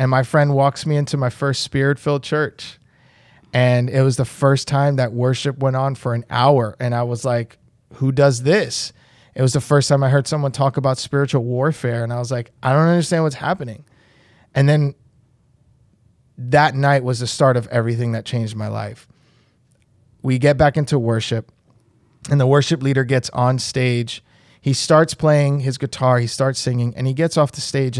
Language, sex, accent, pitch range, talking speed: English, male, American, 120-140 Hz, 195 wpm